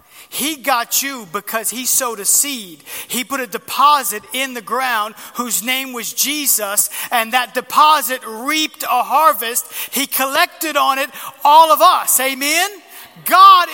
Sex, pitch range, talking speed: male, 220-300 Hz, 150 wpm